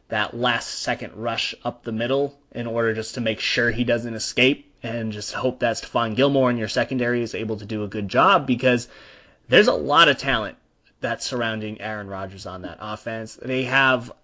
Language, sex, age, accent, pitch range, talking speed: English, male, 20-39, American, 115-130 Hz, 200 wpm